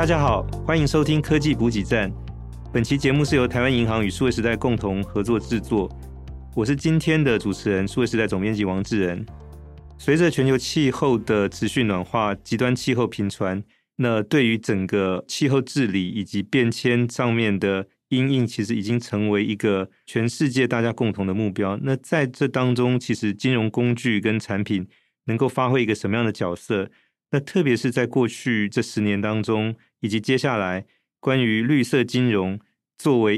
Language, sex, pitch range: Chinese, male, 105-125 Hz